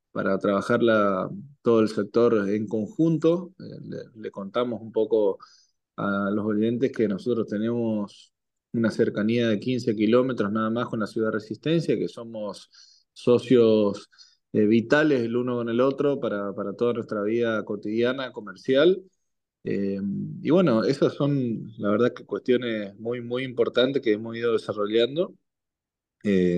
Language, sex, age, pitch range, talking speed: Spanish, male, 20-39, 105-125 Hz, 145 wpm